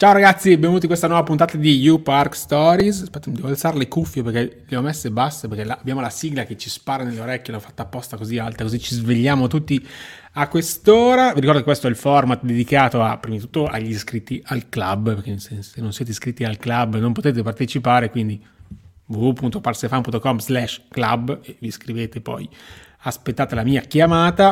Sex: male